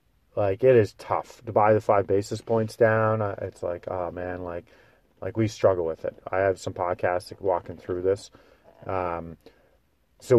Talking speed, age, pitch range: 175 wpm, 40-59, 100-125 Hz